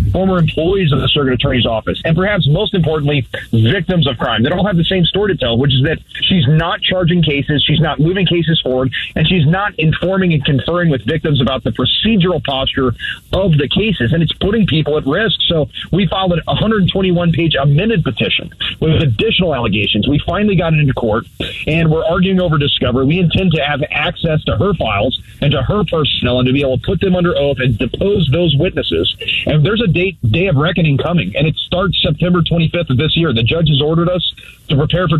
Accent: American